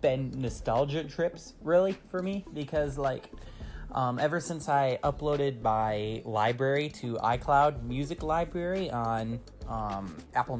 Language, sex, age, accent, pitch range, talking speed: English, male, 30-49, American, 110-140 Hz, 125 wpm